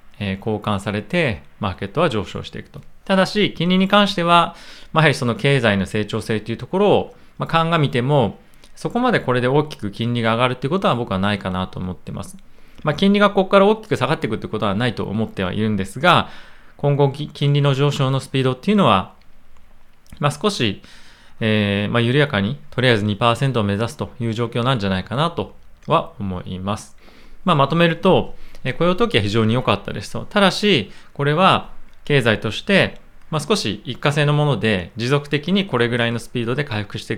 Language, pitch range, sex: Japanese, 105-150 Hz, male